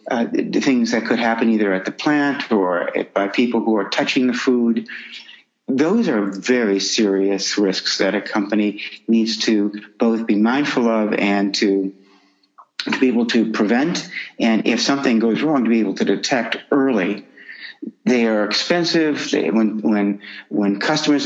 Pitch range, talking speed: 110-140 Hz, 165 wpm